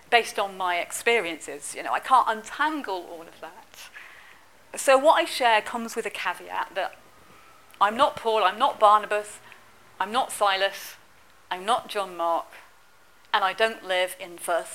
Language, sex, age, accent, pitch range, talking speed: English, female, 40-59, British, 185-245 Hz, 165 wpm